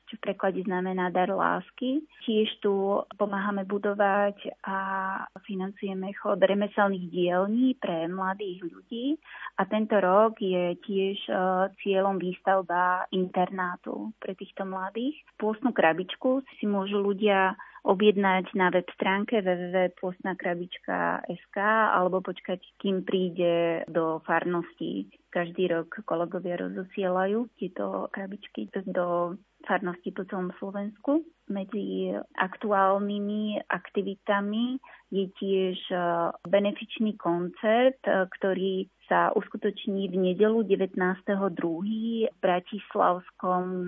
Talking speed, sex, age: 100 wpm, female, 20-39